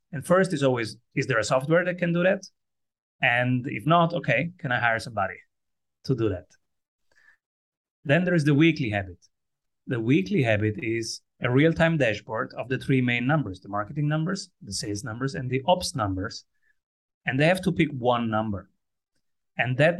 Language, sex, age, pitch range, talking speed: English, male, 30-49, 110-150 Hz, 180 wpm